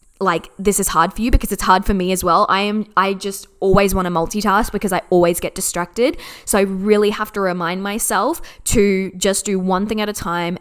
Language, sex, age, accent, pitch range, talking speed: English, female, 10-29, Australian, 185-235 Hz, 230 wpm